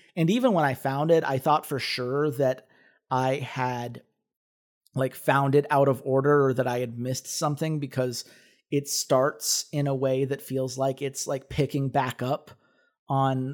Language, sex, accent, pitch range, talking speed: English, male, American, 130-155 Hz, 175 wpm